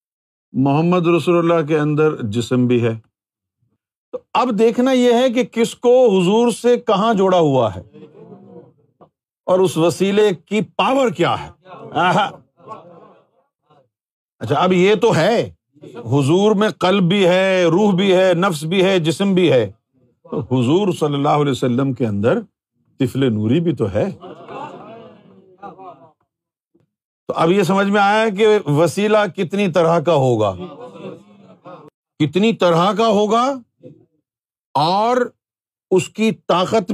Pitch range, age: 145-225 Hz, 50-69